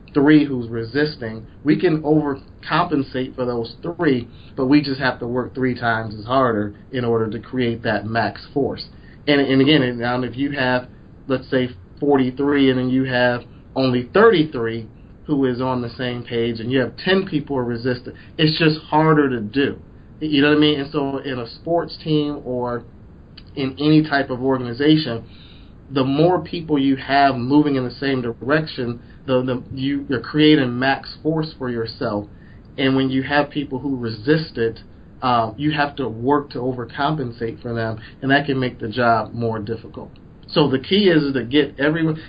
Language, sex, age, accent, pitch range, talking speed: English, male, 30-49, American, 120-145 Hz, 185 wpm